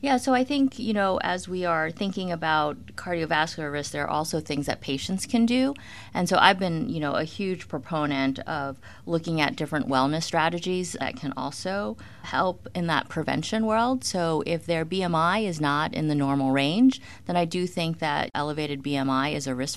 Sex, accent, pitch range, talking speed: female, American, 130-165 Hz, 195 wpm